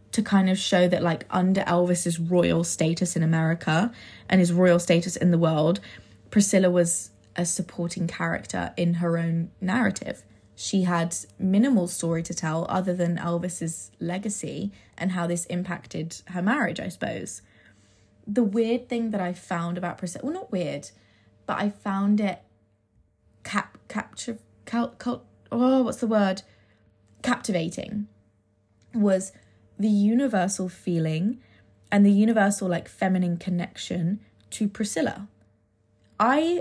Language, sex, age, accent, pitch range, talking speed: English, female, 20-39, British, 170-210 Hz, 135 wpm